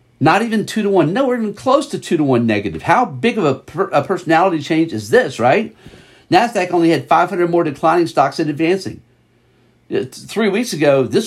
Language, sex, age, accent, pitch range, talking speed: English, male, 50-69, American, 140-190 Hz, 210 wpm